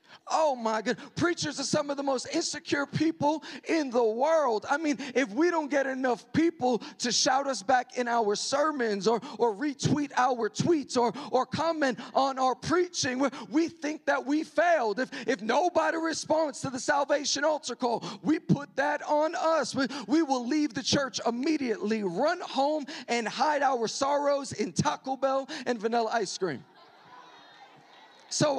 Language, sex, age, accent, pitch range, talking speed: English, male, 40-59, American, 245-315 Hz, 170 wpm